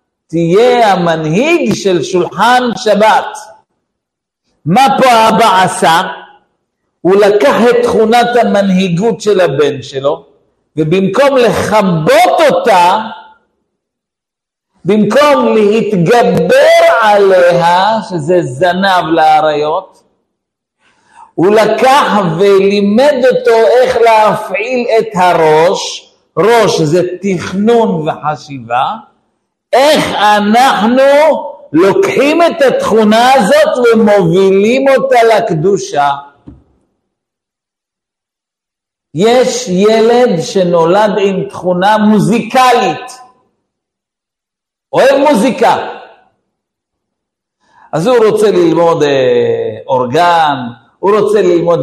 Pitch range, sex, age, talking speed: 170-250 Hz, male, 50-69, 75 wpm